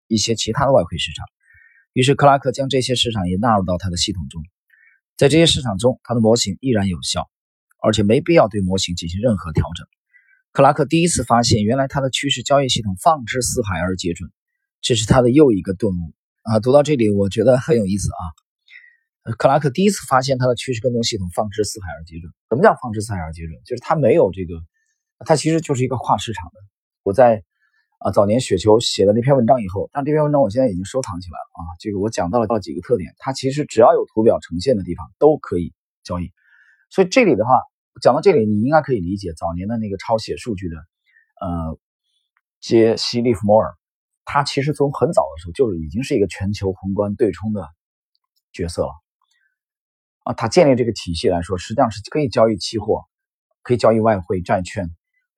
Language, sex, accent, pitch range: Chinese, male, native, 95-140 Hz